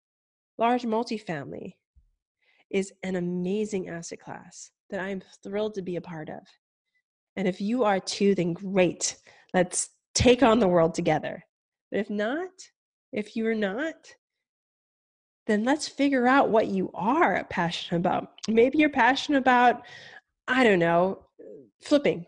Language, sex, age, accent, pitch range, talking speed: English, female, 20-39, American, 190-270 Hz, 140 wpm